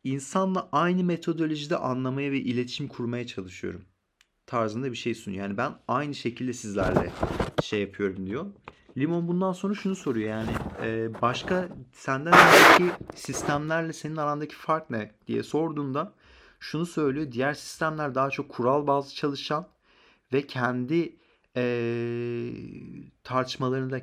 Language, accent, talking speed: Turkish, native, 120 wpm